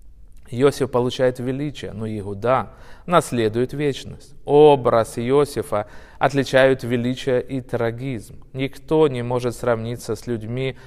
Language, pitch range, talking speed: Russian, 115-135 Hz, 105 wpm